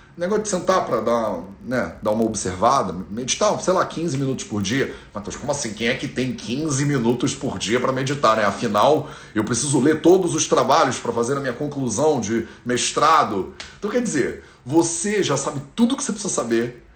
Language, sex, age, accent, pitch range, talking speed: Portuguese, male, 40-59, Brazilian, 120-175 Hz, 200 wpm